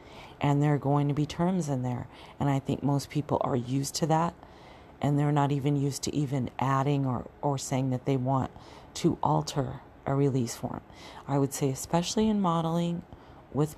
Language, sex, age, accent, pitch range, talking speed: English, female, 40-59, American, 130-150 Hz, 190 wpm